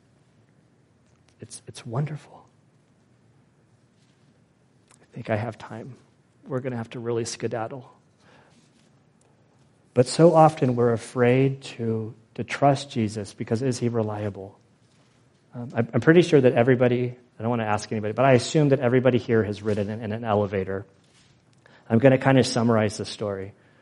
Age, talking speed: 40-59, 150 wpm